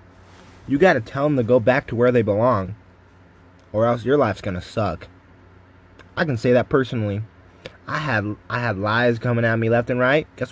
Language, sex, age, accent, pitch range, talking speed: English, male, 20-39, American, 90-115 Hz, 205 wpm